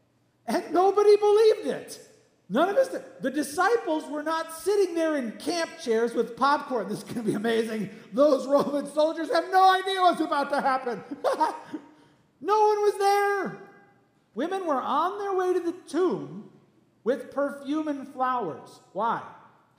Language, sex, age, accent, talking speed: English, male, 50-69, American, 160 wpm